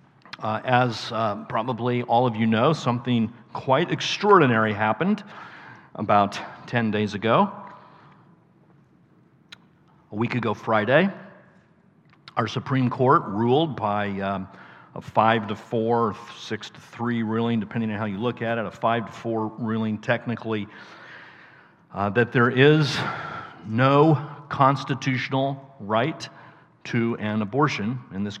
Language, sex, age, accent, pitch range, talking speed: English, male, 50-69, American, 110-140 Hz, 125 wpm